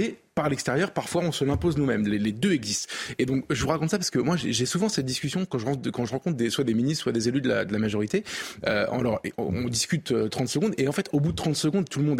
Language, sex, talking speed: French, male, 255 wpm